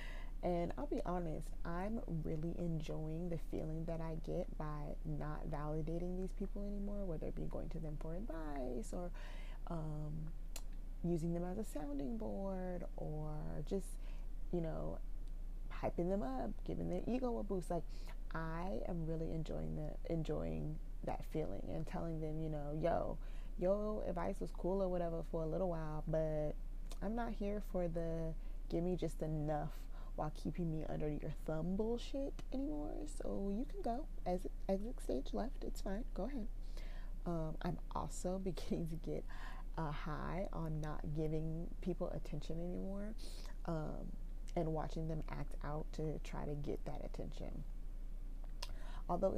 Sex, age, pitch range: female, 20-39, 155-190 Hz